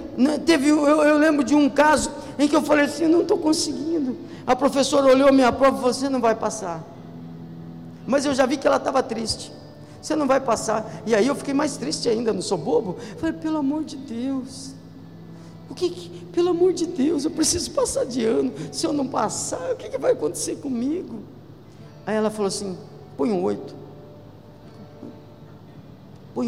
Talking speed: 195 wpm